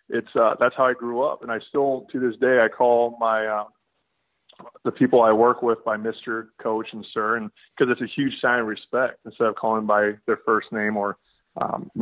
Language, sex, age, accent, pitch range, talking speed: English, male, 20-39, American, 110-120 Hz, 220 wpm